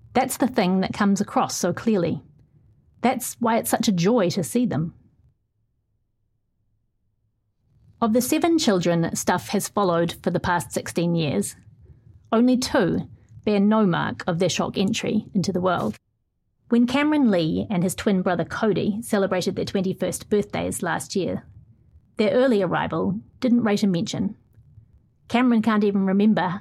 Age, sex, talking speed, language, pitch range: 40-59, female, 150 wpm, English, 175-230 Hz